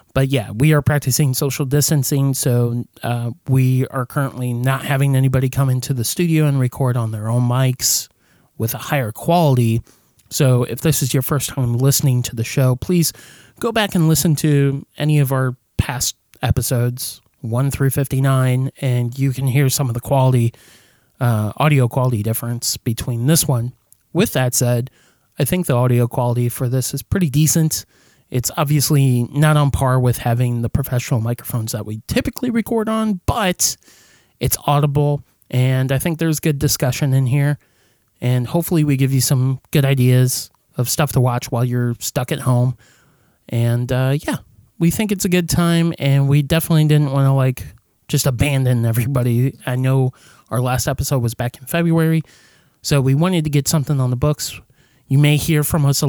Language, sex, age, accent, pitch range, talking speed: English, male, 30-49, American, 120-145 Hz, 180 wpm